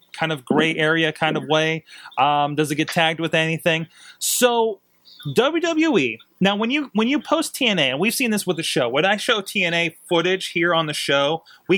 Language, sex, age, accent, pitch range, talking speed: English, male, 30-49, American, 140-200 Hz, 205 wpm